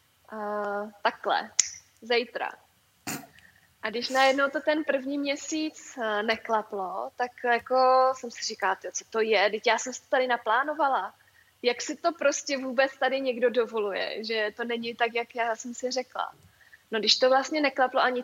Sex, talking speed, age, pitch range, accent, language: female, 160 wpm, 20-39, 225-255 Hz, native, Czech